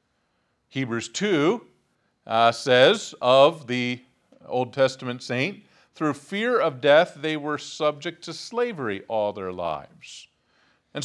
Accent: American